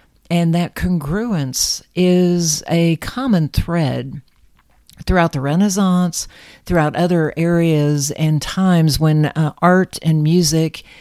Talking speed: 110 wpm